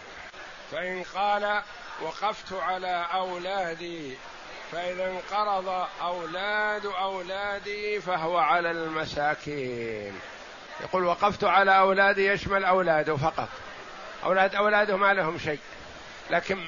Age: 50-69